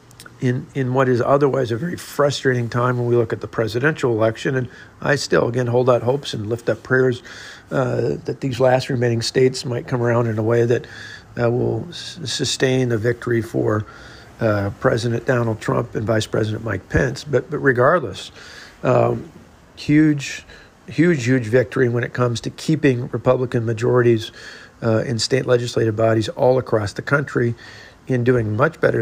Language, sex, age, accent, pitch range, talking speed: English, male, 50-69, American, 115-130 Hz, 175 wpm